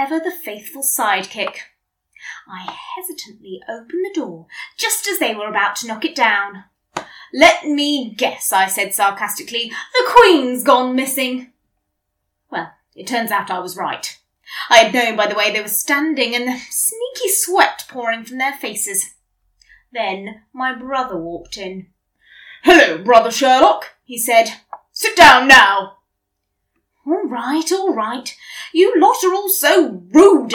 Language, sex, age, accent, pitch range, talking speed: English, female, 20-39, British, 225-340 Hz, 145 wpm